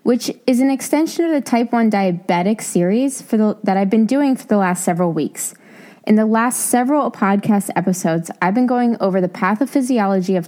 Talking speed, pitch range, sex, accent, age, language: 185 wpm, 190-235 Hz, female, American, 20-39, English